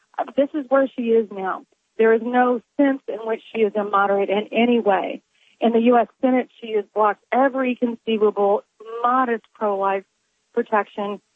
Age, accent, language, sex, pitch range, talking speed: 40-59, American, English, female, 210-245 Hz, 165 wpm